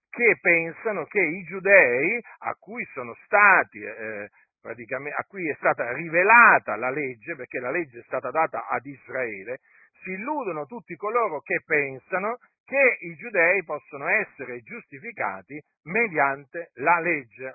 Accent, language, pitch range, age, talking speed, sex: native, Italian, 140-205 Hz, 50-69, 140 wpm, male